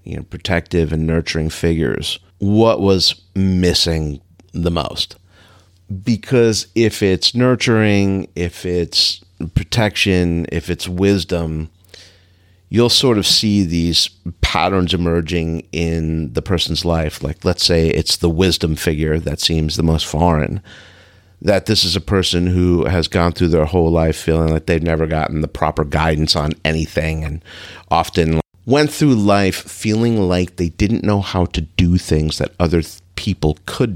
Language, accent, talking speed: English, American, 150 wpm